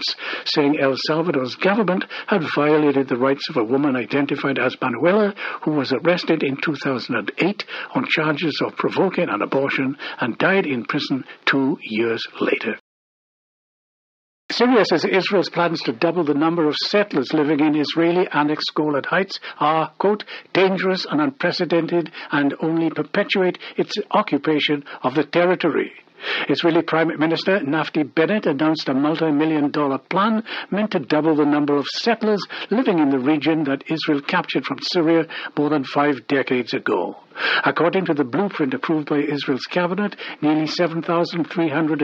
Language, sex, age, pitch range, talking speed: English, male, 60-79, 145-175 Hz, 145 wpm